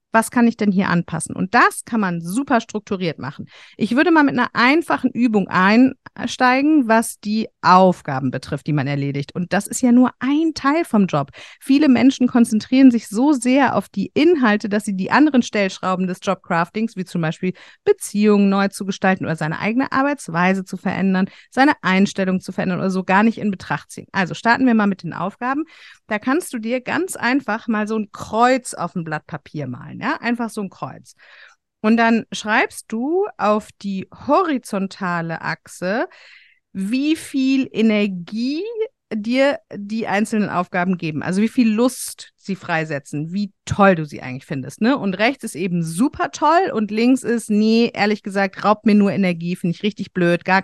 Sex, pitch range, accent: female, 185-250 Hz, German